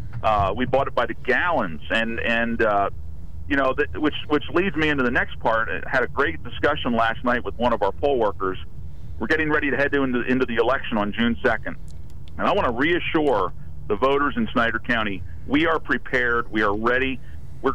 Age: 40-59